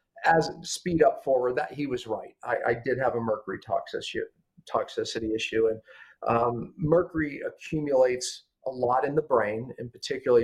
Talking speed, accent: 160 wpm, American